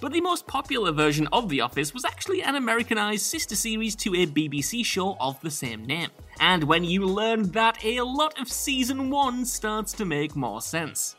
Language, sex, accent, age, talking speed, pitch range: English, male, British, 20-39, 200 wpm, 150-220 Hz